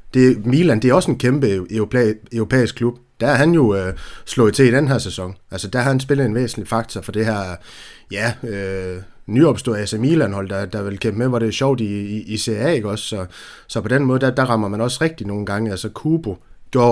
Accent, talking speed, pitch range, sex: native, 240 wpm, 110-130 Hz, male